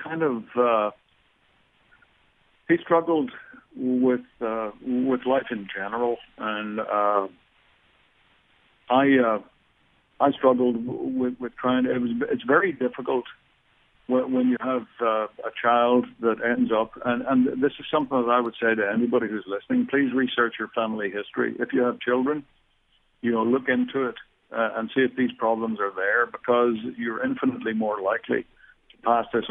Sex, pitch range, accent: male, 115-130 Hz, American